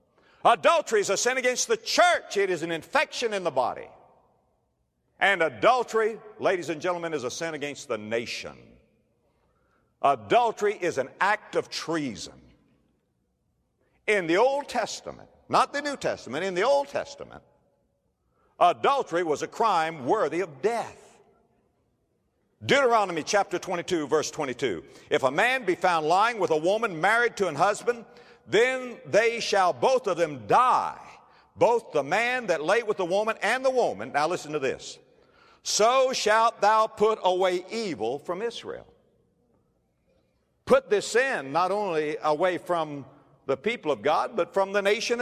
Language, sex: English, male